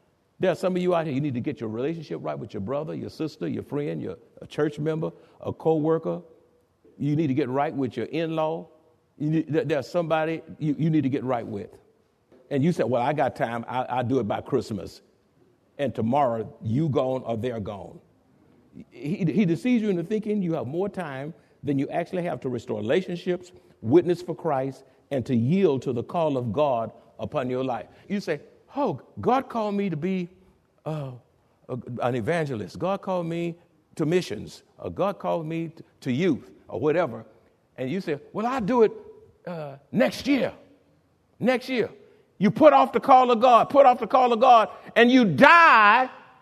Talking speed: 190 wpm